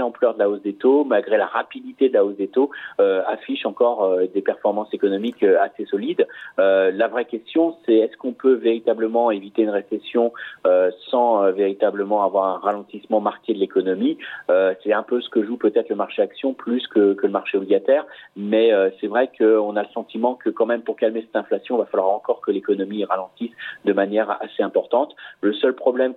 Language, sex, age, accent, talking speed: French, male, 40-59, French, 210 wpm